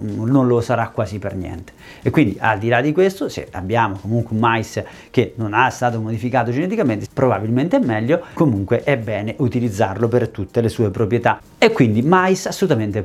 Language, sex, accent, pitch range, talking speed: Italian, male, native, 110-145 Hz, 185 wpm